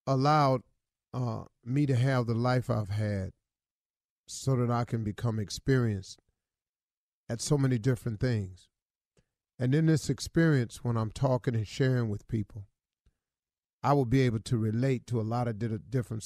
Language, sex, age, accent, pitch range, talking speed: English, male, 40-59, American, 115-140 Hz, 155 wpm